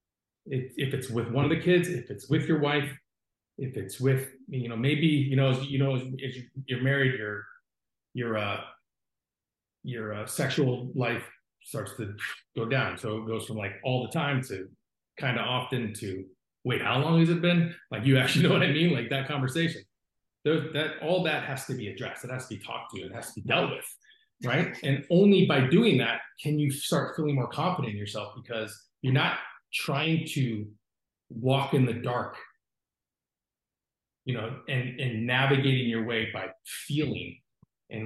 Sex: male